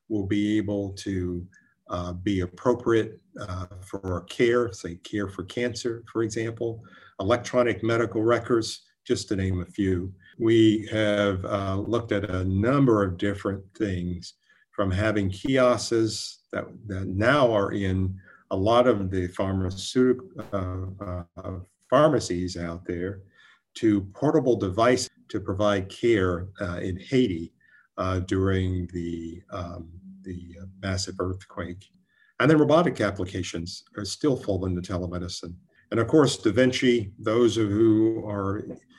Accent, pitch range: American, 95-115 Hz